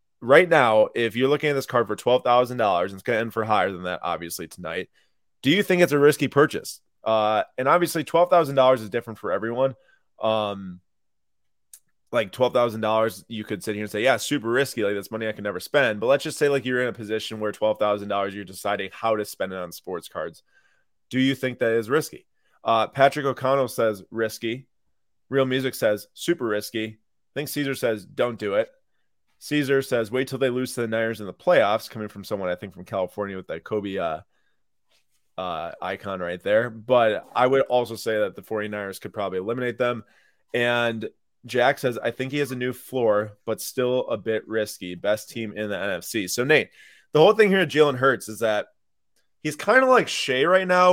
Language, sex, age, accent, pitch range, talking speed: English, male, 20-39, American, 105-135 Hz, 205 wpm